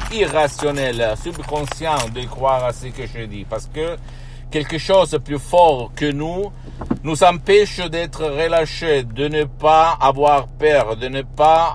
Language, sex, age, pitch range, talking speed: Italian, male, 60-79, 125-155 Hz, 150 wpm